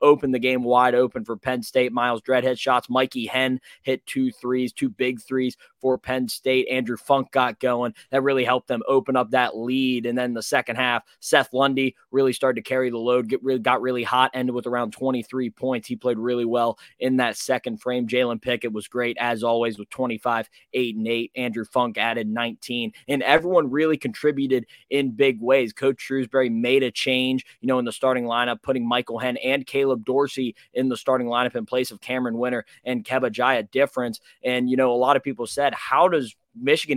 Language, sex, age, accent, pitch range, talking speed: English, male, 20-39, American, 120-130 Hz, 210 wpm